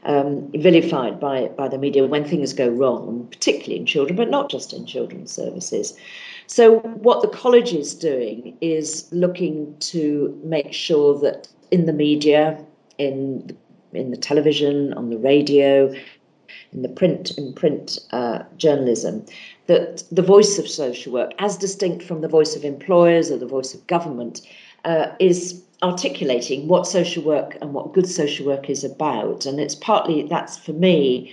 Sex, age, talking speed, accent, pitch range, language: female, 50-69, 155 wpm, British, 140-180 Hz, English